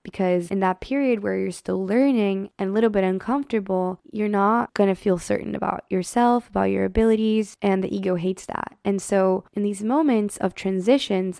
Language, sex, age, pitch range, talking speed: English, female, 20-39, 190-225 Hz, 190 wpm